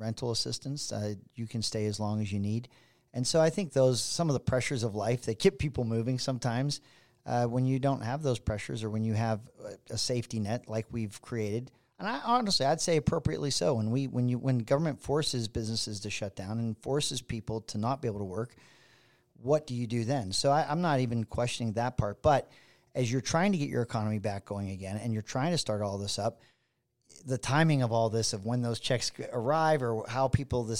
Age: 40-59